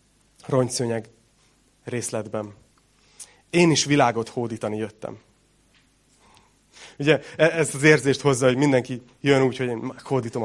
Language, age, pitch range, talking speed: Hungarian, 30-49, 115-145 Hz, 110 wpm